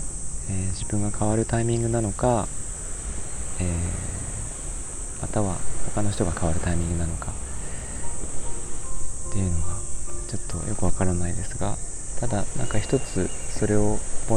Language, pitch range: Japanese, 85-105 Hz